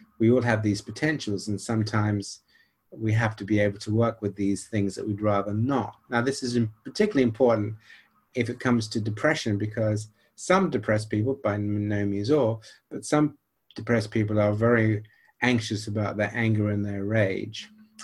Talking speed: 175 wpm